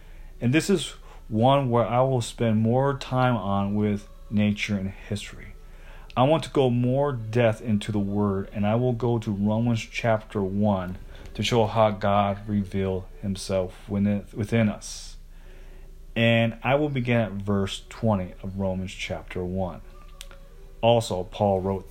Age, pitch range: 40-59, 95-115 Hz